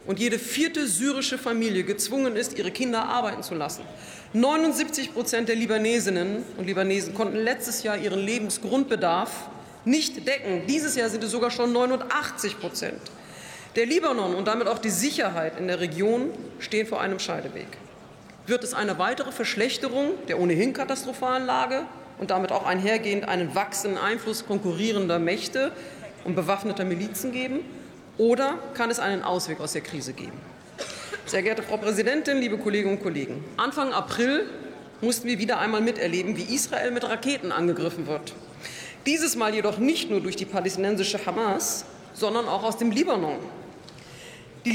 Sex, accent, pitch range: female, German, 195-255 Hz